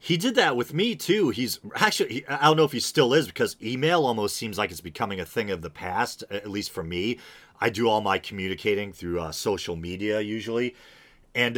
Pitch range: 95-135 Hz